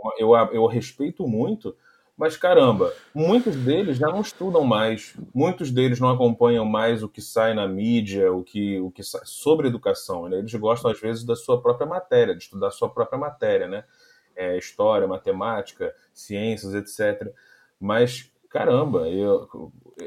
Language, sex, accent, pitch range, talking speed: Portuguese, male, Brazilian, 115-165 Hz, 160 wpm